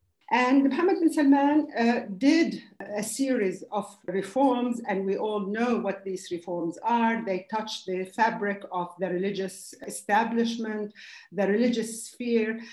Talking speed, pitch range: 135 wpm, 195-235 Hz